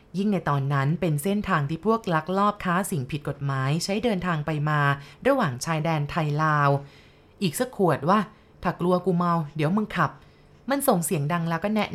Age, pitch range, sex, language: 20-39, 155-200 Hz, female, Thai